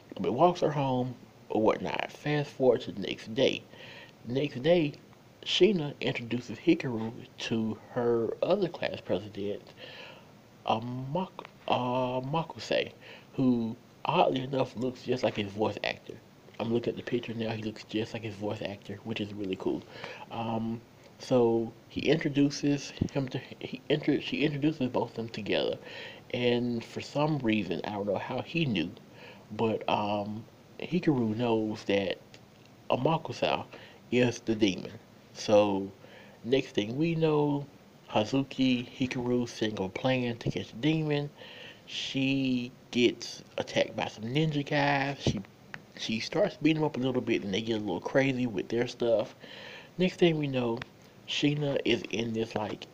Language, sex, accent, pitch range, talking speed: English, male, American, 110-140 Hz, 150 wpm